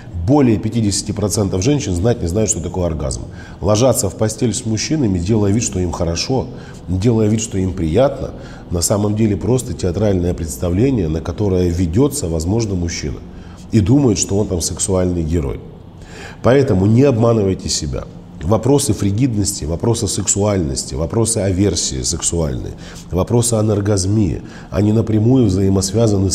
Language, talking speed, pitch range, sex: Russian, 130 wpm, 85-110 Hz, male